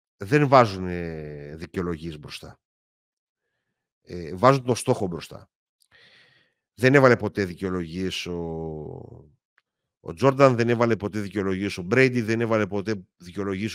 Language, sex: Greek, male